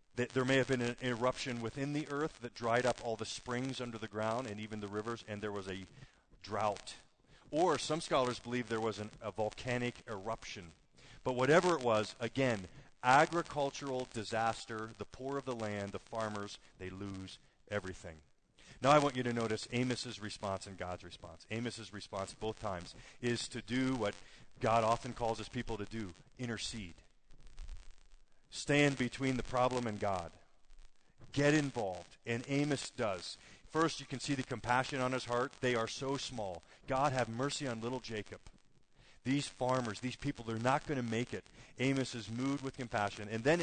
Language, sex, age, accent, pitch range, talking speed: English, male, 40-59, American, 105-130 Hz, 175 wpm